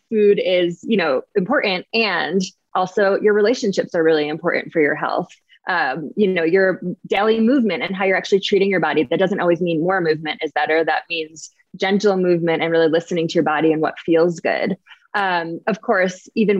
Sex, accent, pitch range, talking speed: female, American, 170-210 Hz, 195 wpm